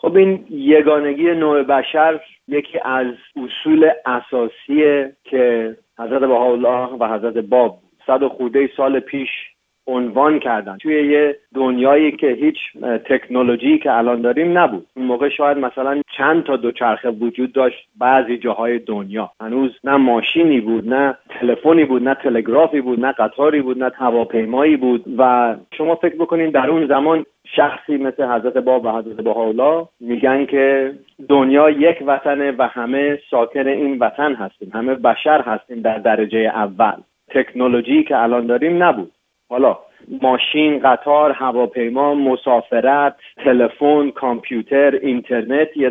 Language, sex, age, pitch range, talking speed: Persian, male, 40-59, 120-150 Hz, 135 wpm